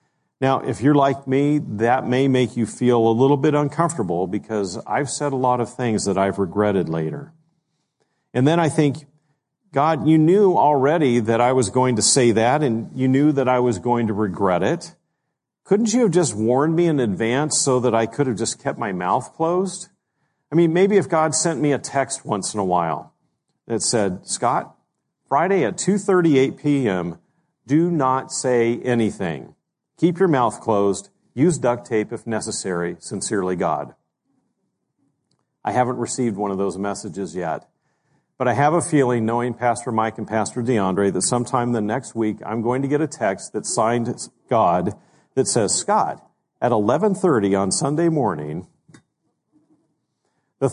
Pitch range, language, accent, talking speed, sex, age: 110-150 Hz, English, American, 170 wpm, male, 40-59